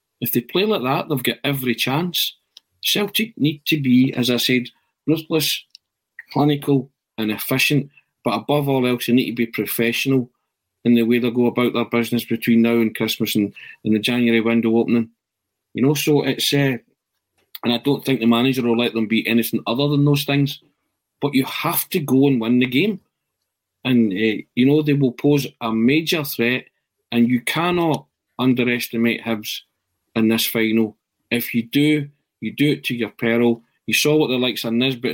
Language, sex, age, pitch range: English, male, 40-59, 115-135 Hz